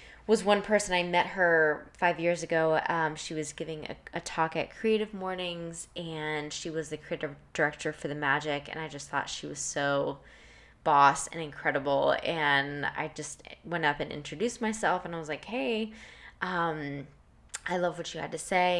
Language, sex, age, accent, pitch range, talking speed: English, female, 10-29, American, 150-175 Hz, 190 wpm